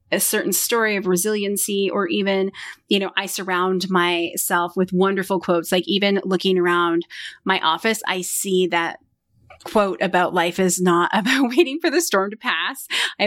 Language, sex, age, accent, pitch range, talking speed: English, female, 30-49, American, 180-230 Hz, 165 wpm